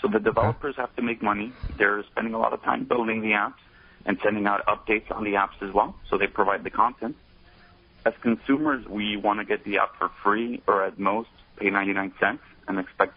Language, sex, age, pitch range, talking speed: English, male, 40-59, 100-115 Hz, 220 wpm